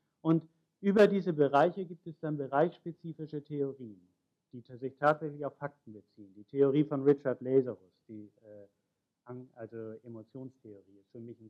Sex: male